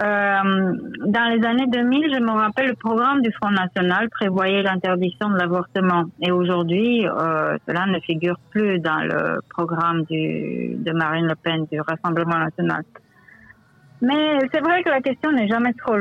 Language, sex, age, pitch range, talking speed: French, female, 30-49, 165-200 Hz, 165 wpm